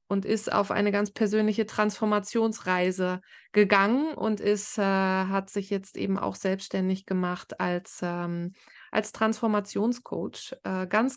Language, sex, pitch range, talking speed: Dutch, female, 195-245 Hz, 120 wpm